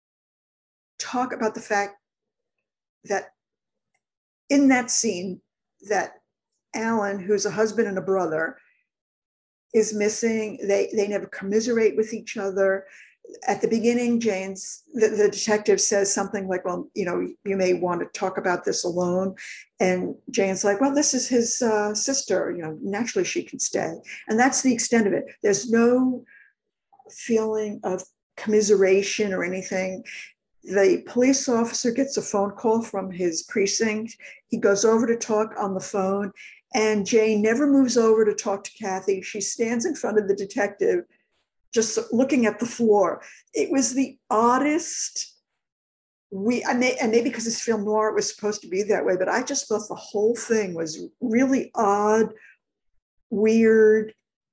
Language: English